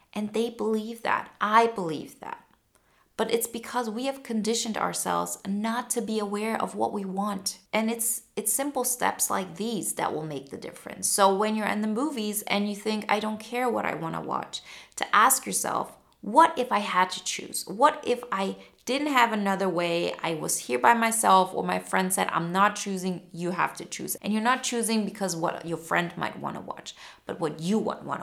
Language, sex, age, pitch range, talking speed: English, female, 20-39, 170-215 Hz, 215 wpm